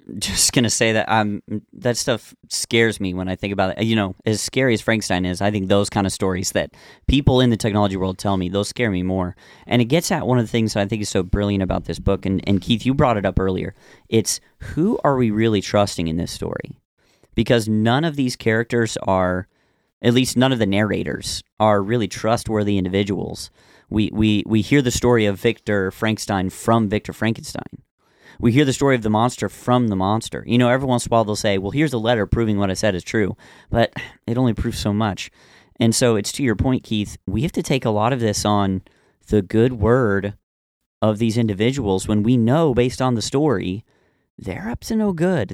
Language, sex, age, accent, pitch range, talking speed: English, male, 40-59, American, 100-120 Hz, 225 wpm